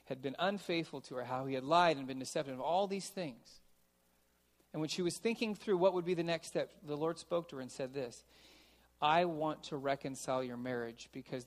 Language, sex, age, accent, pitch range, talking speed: English, male, 40-59, American, 130-180 Hz, 220 wpm